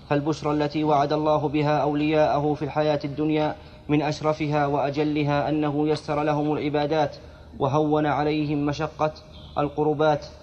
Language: Arabic